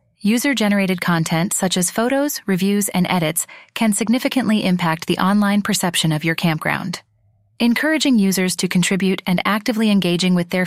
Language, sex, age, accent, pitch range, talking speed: English, female, 30-49, American, 180-230 Hz, 145 wpm